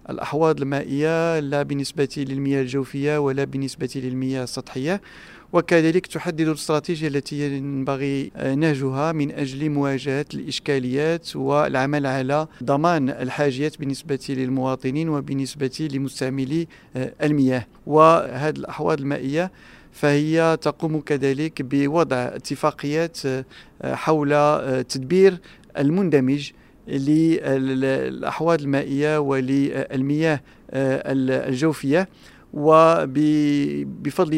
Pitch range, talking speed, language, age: 135-155 Hz, 80 wpm, Arabic, 40-59